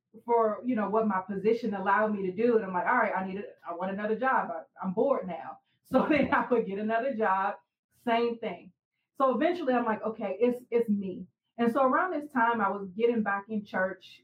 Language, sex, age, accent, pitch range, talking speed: English, female, 30-49, American, 190-225 Hz, 230 wpm